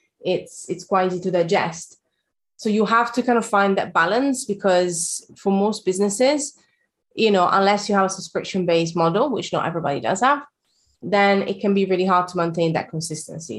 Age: 20-39